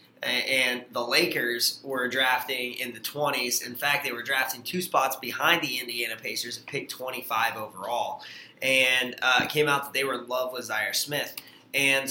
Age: 20-39